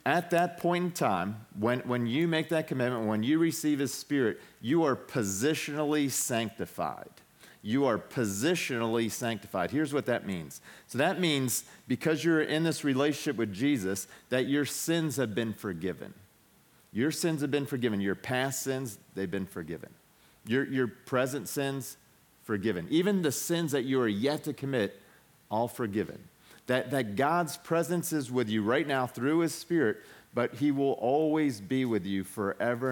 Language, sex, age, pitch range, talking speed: English, male, 40-59, 115-150 Hz, 165 wpm